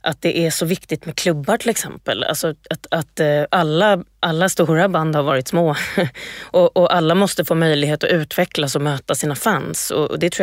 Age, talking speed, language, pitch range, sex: 20-39, 195 wpm, Swedish, 160-200 Hz, female